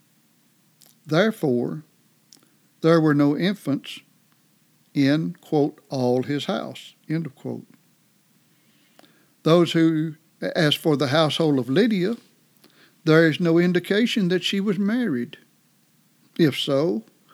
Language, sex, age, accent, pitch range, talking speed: English, male, 60-79, American, 145-175 Hz, 105 wpm